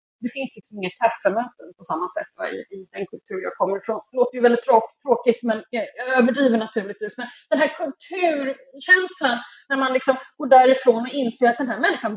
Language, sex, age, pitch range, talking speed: Swedish, female, 30-49, 220-325 Hz, 195 wpm